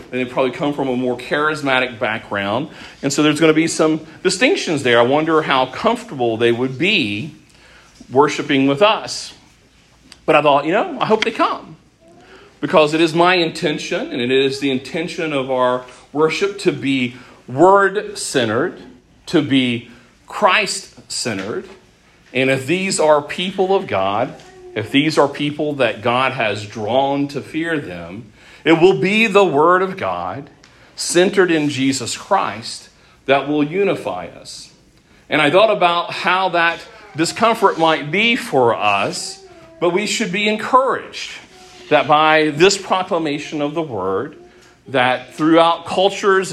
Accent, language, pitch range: American, English, 130-180 Hz